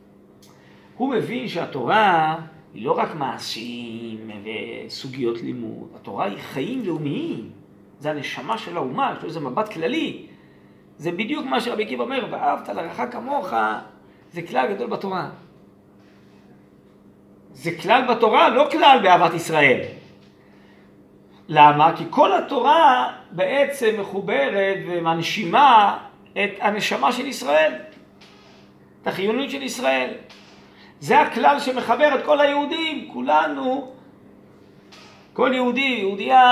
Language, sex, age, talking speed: Hebrew, male, 40-59, 110 wpm